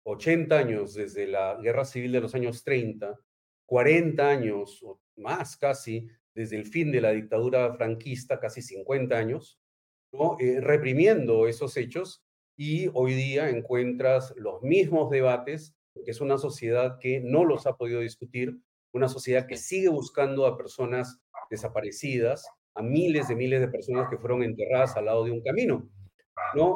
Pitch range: 115-145 Hz